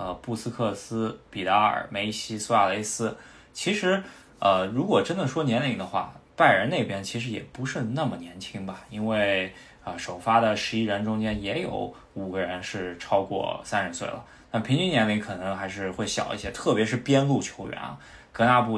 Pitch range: 95-115 Hz